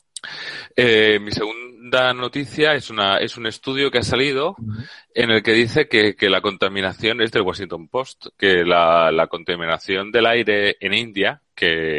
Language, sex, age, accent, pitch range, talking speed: Spanish, male, 30-49, Spanish, 100-125 Hz, 160 wpm